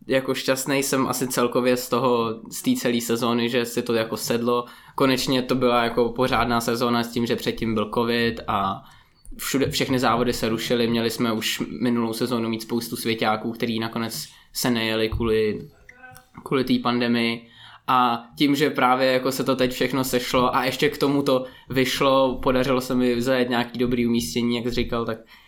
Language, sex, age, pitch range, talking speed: Czech, male, 20-39, 115-130 Hz, 180 wpm